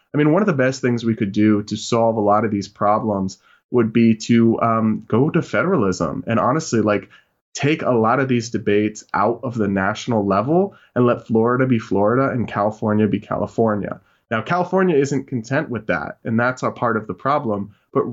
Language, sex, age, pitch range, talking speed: English, male, 20-39, 110-140 Hz, 200 wpm